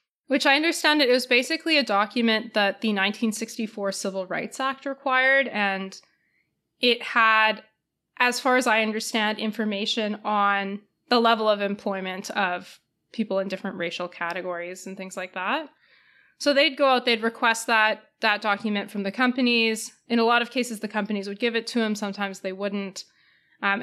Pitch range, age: 200-245 Hz, 20-39